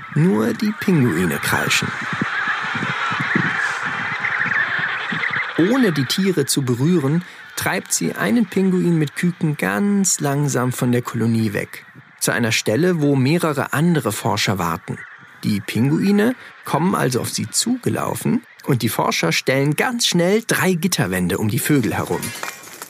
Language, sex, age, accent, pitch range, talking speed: German, male, 40-59, German, 125-175 Hz, 125 wpm